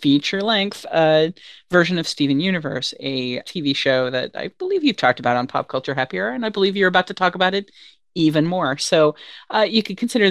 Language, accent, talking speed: English, American, 200 wpm